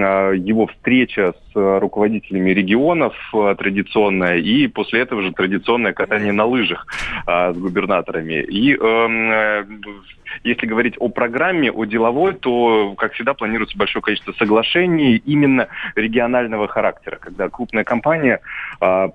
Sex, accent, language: male, native, Russian